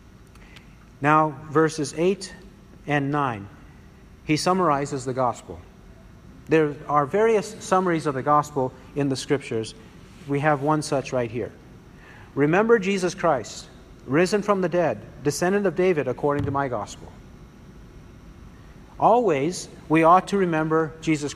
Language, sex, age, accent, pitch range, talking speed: English, male, 50-69, American, 140-185 Hz, 125 wpm